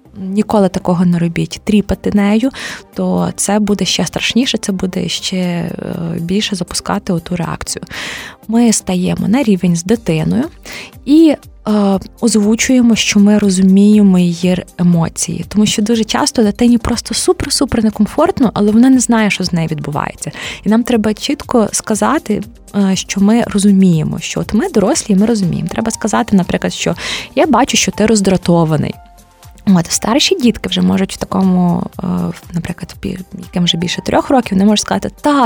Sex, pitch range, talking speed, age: female, 180-230 Hz, 145 wpm, 20-39